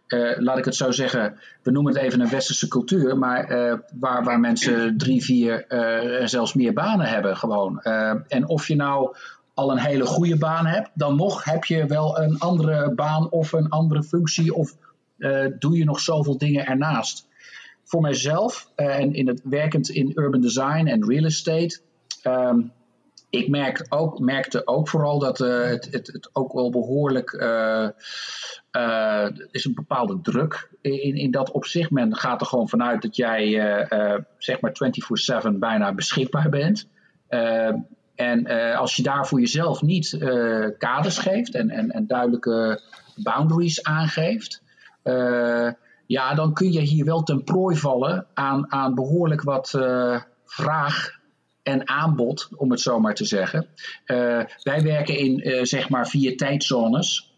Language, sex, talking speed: English, male, 165 wpm